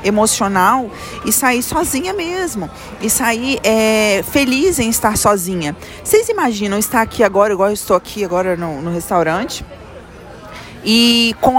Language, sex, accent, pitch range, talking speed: Portuguese, female, Brazilian, 175-235 Hz, 140 wpm